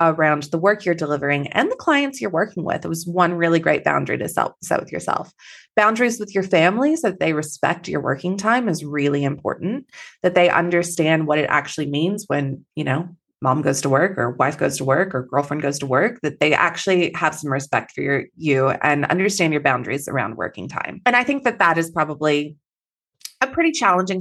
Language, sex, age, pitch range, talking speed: English, female, 20-39, 155-220 Hz, 210 wpm